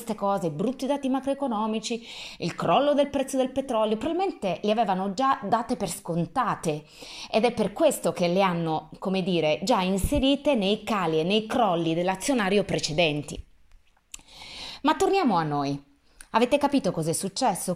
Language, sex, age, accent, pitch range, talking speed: Italian, female, 30-49, native, 165-255 Hz, 150 wpm